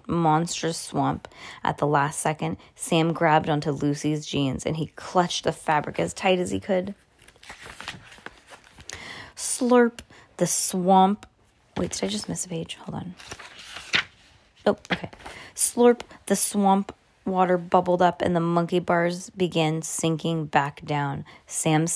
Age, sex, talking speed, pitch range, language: 20-39, female, 135 wpm, 160-210 Hz, English